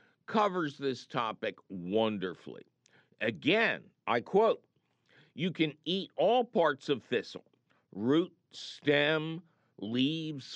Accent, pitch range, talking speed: American, 125-170 Hz, 95 wpm